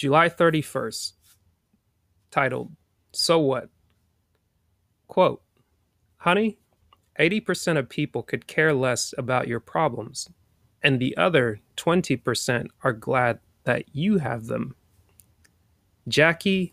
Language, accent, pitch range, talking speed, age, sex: English, American, 100-140 Hz, 95 wpm, 30-49, male